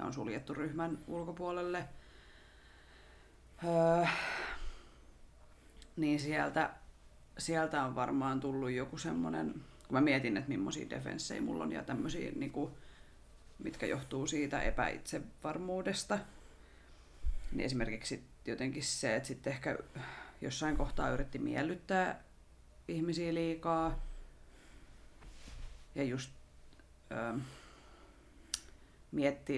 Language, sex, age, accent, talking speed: Finnish, female, 30-49, native, 80 wpm